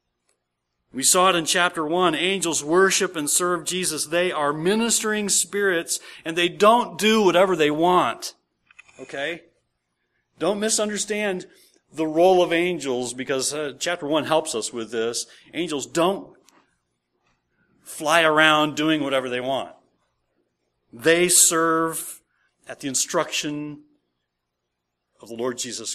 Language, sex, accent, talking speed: English, male, American, 125 wpm